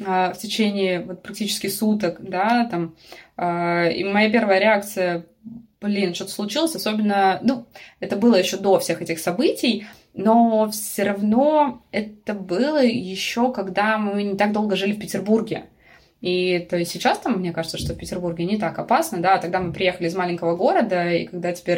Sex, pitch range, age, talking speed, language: female, 185-255 Hz, 20-39, 160 wpm, Russian